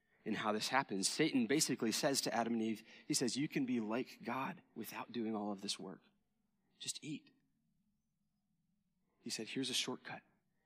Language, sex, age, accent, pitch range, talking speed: English, male, 30-49, American, 110-155 Hz, 175 wpm